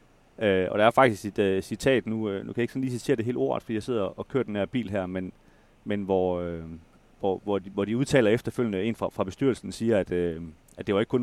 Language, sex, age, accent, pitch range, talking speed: Danish, male, 30-49, native, 95-120 Hz, 280 wpm